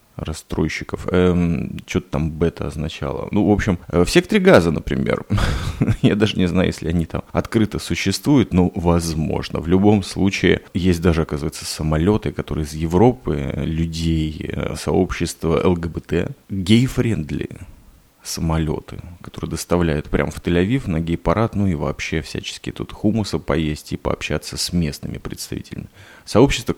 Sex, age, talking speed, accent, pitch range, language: male, 30-49, 135 wpm, native, 80-100 Hz, Russian